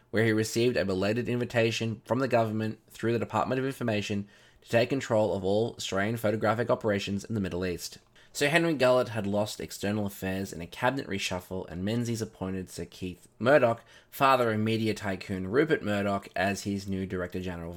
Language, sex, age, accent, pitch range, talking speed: English, male, 20-39, Australian, 95-120 Hz, 180 wpm